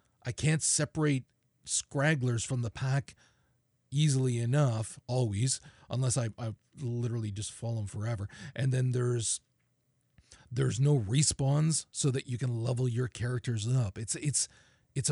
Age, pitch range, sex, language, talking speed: 40-59, 115-135 Hz, male, English, 135 wpm